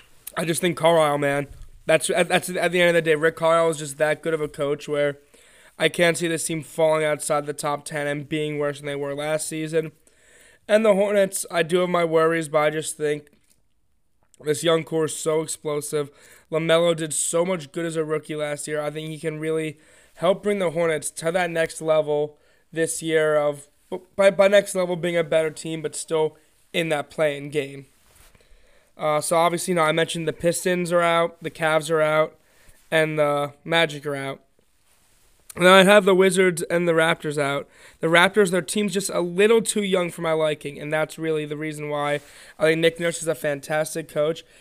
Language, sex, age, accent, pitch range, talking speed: English, male, 20-39, American, 150-170 Hz, 205 wpm